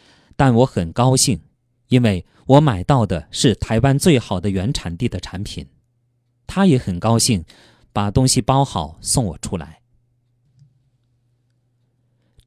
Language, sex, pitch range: Chinese, male, 105-135 Hz